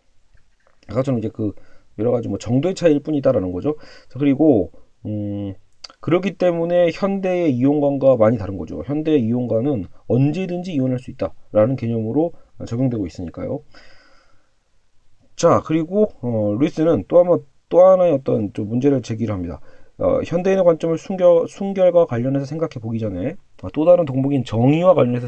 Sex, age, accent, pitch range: male, 40-59, native, 115-165 Hz